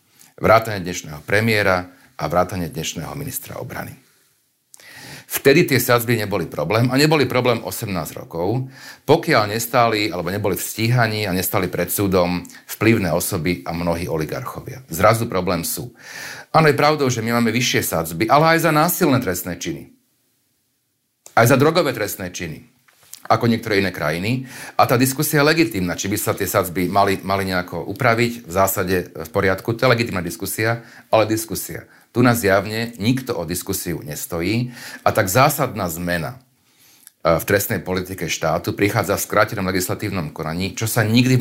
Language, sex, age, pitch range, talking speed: Slovak, male, 40-59, 95-120 Hz, 155 wpm